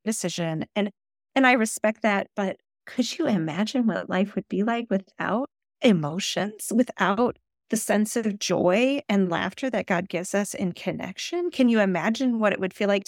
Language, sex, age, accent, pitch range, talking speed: English, female, 40-59, American, 180-230 Hz, 175 wpm